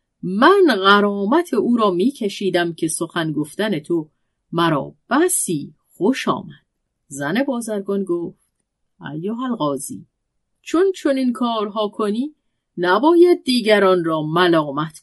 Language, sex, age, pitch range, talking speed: Persian, female, 40-59, 165-250 Hz, 110 wpm